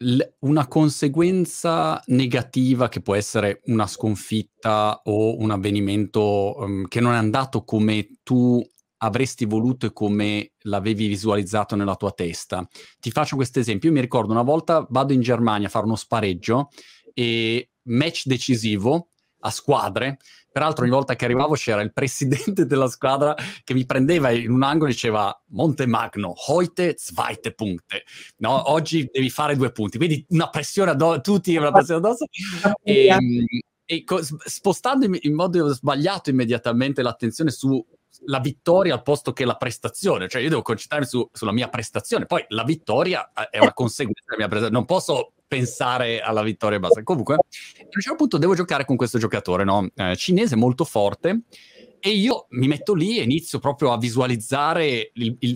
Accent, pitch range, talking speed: native, 110-155 Hz, 160 wpm